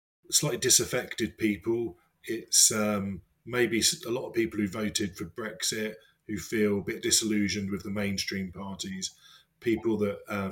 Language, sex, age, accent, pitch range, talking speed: English, male, 30-49, British, 95-115 Hz, 150 wpm